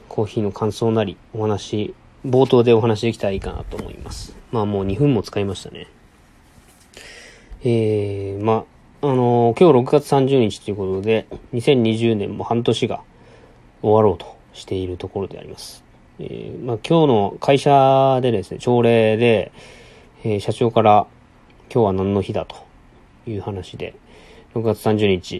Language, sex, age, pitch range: Japanese, male, 20-39, 105-130 Hz